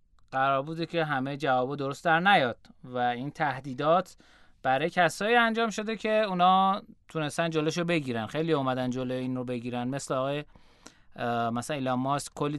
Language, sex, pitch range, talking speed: Persian, male, 130-185 Hz, 135 wpm